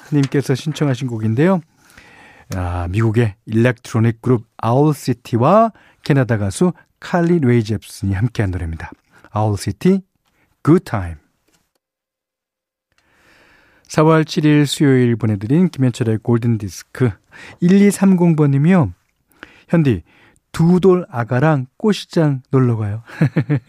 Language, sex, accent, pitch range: Korean, male, native, 110-155 Hz